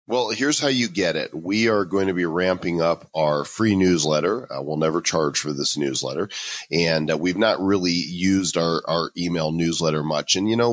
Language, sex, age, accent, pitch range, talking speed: English, male, 40-59, American, 85-110 Hz, 205 wpm